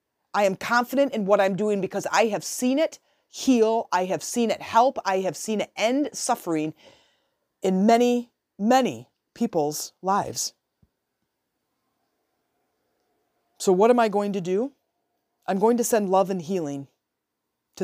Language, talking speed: English, 150 wpm